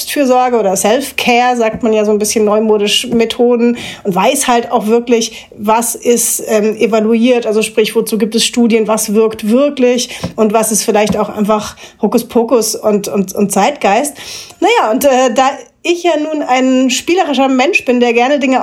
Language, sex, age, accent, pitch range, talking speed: German, female, 30-49, German, 230-270 Hz, 175 wpm